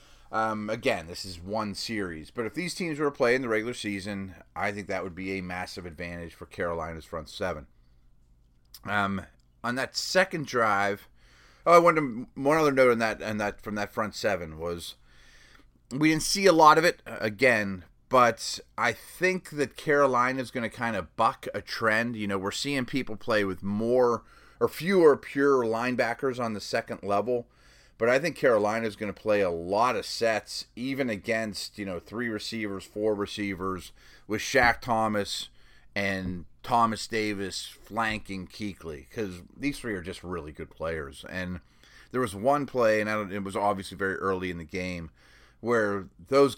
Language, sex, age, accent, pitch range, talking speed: English, male, 30-49, American, 90-115 Hz, 180 wpm